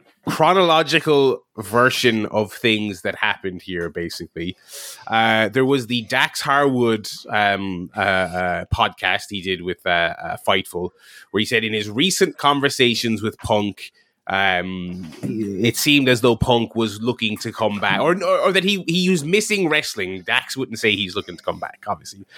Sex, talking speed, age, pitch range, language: male, 165 wpm, 20-39, 100-125 Hz, English